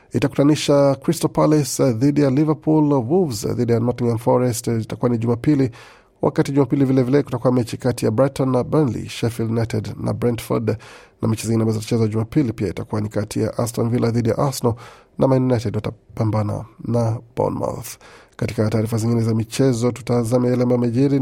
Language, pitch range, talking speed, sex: Swahili, 115-130 Hz, 160 wpm, male